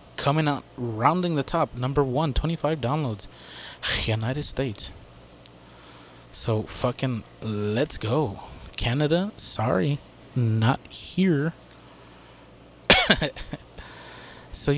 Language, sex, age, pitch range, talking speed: English, male, 20-39, 110-140 Hz, 80 wpm